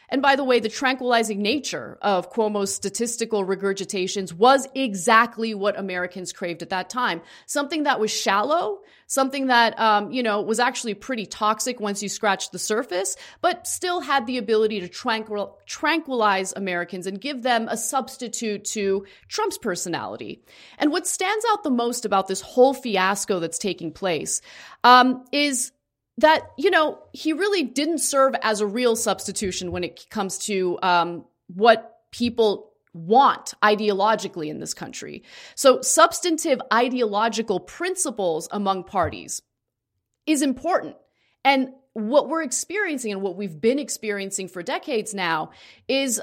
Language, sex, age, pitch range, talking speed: English, female, 30-49, 200-270 Hz, 145 wpm